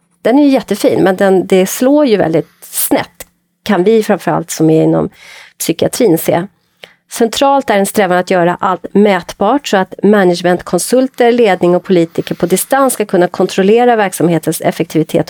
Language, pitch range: Swedish, 170-205 Hz